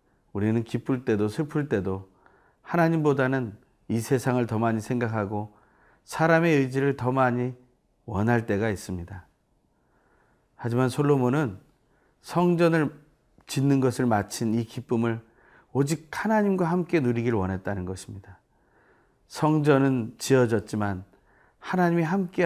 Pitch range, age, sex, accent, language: 110-160 Hz, 40-59, male, native, Korean